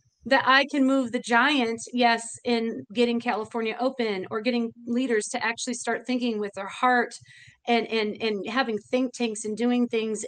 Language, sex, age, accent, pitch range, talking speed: English, female, 30-49, American, 225-265 Hz, 175 wpm